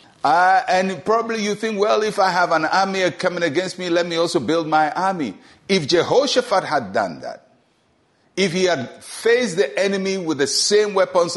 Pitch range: 155-210 Hz